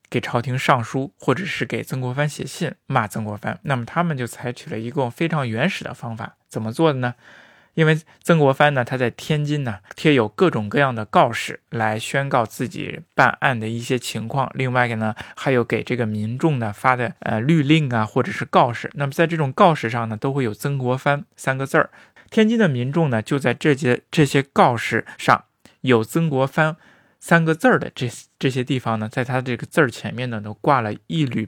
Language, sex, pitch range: Chinese, male, 115-155 Hz